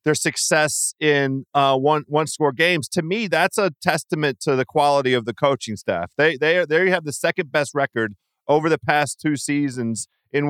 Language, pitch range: English, 135-165 Hz